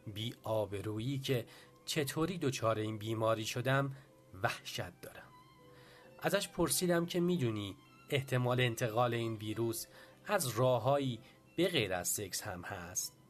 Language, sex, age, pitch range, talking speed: English, male, 40-59, 115-150 Hz, 115 wpm